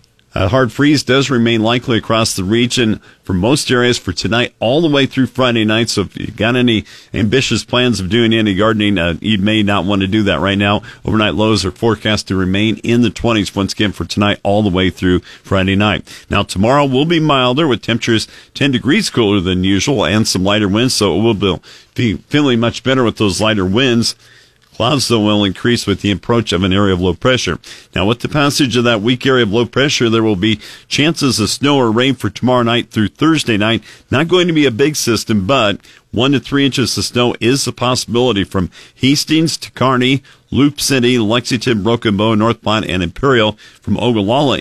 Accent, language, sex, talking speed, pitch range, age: American, English, male, 210 wpm, 100-125 Hz, 50-69